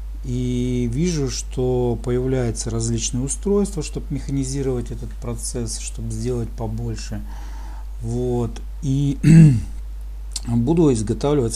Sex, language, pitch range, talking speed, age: male, Russian, 115-140 Hz, 90 wpm, 50-69